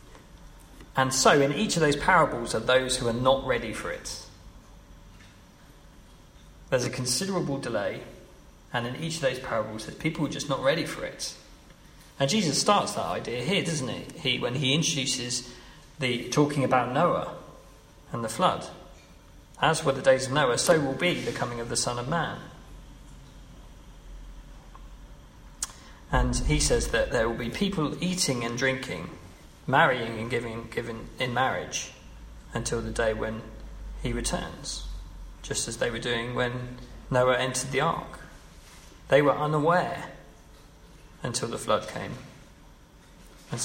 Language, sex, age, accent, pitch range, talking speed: English, male, 40-59, British, 120-150 Hz, 150 wpm